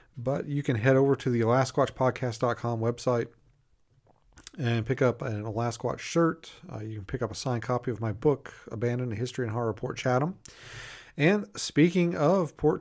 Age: 40-59